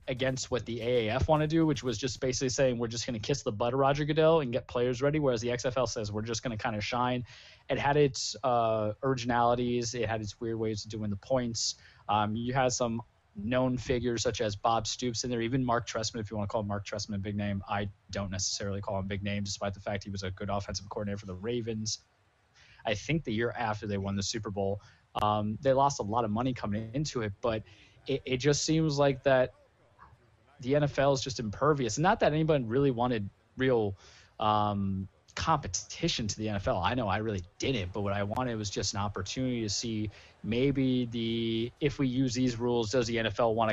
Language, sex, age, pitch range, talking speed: English, male, 20-39, 105-130 Hz, 225 wpm